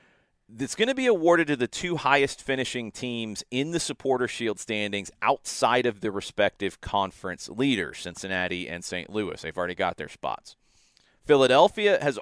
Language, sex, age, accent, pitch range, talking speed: English, male, 40-59, American, 100-145 Hz, 160 wpm